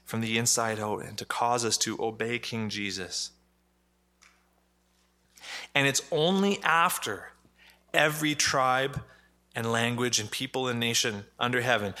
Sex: male